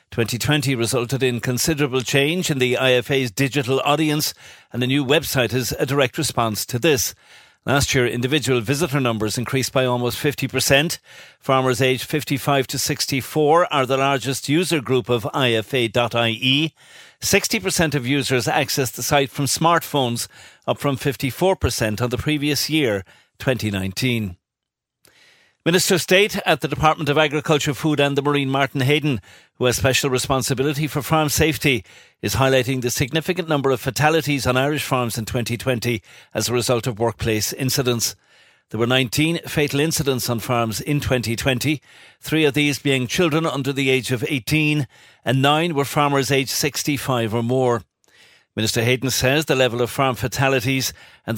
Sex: male